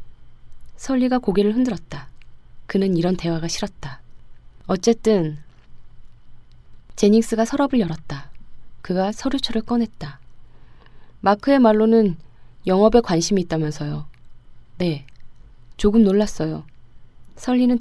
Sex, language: female, Korean